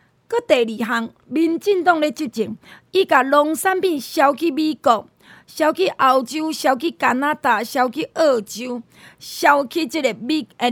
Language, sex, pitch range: Chinese, female, 230-335 Hz